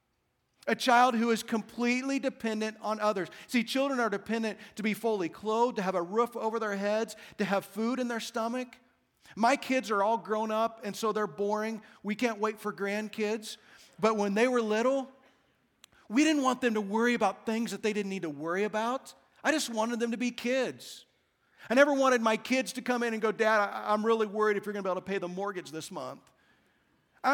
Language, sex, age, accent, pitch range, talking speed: English, male, 40-59, American, 210-255 Hz, 215 wpm